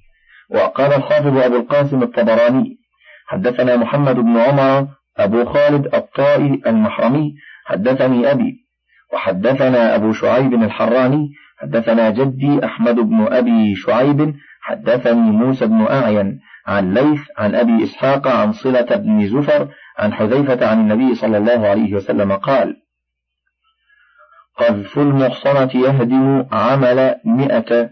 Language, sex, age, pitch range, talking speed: Arabic, male, 50-69, 115-145 Hz, 110 wpm